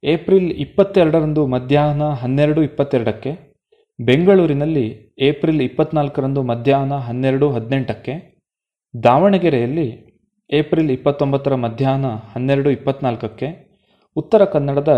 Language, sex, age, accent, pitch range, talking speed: Kannada, male, 30-49, native, 125-150 Hz, 75 wpm